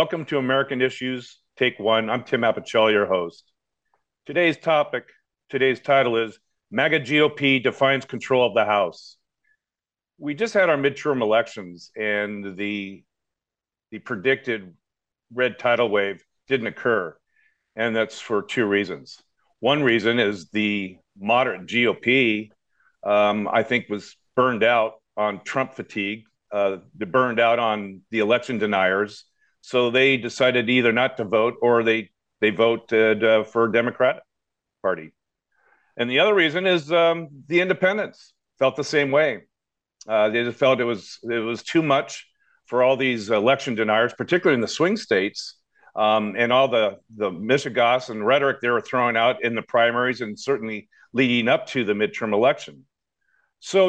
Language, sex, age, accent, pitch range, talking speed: English, male, 50-69, American, 110-140 Hz, 150 wpm